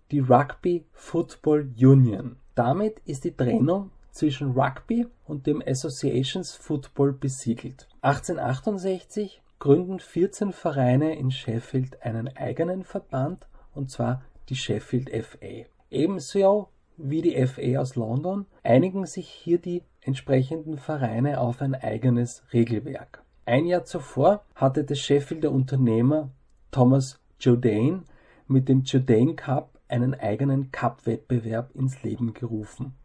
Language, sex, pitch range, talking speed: German, male, 125-170 Hz, 120 wpm